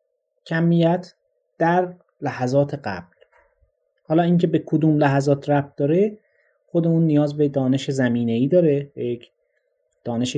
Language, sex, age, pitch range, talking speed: Persian, male, 30-49, 120-165 Hz, 120 wpm